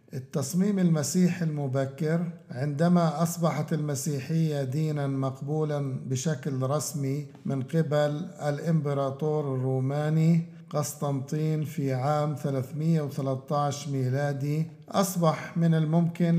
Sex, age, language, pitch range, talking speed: male, 50-69, Arabic, 145-160 Hz, 80 wpm